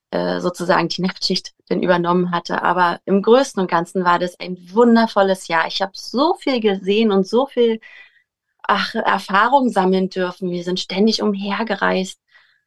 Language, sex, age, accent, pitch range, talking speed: German, female, 30-49, German, 180-225 Hz, 150 wpm